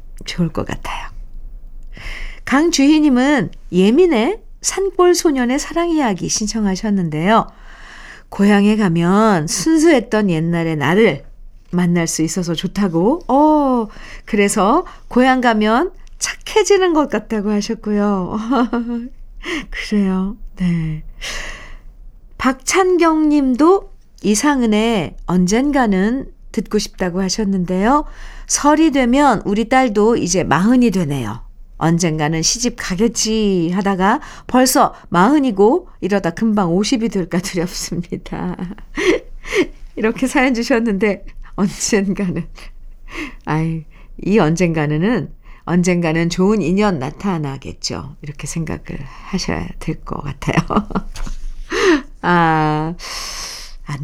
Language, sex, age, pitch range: Korean, female, 50-69, 175-260 Hz